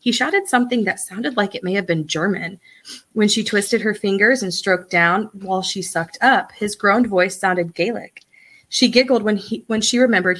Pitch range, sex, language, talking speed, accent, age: 180-230 Hz, female, English, 200 wpm, American, 20-39